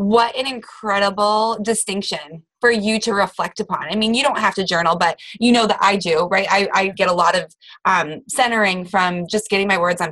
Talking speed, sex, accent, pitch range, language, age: 220 wpm, female, American, 185-235 Hz, English, 20-39